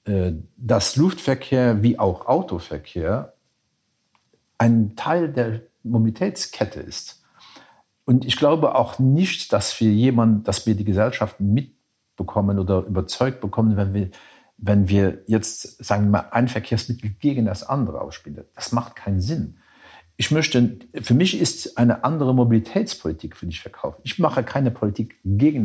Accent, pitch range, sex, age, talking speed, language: German, 100-130 Hz, male, 50-69, 140 wpm, German